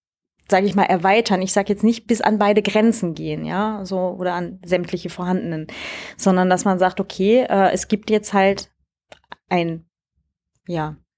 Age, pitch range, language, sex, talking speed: 30-49, 180-215 Hz, German, female, 165 wpm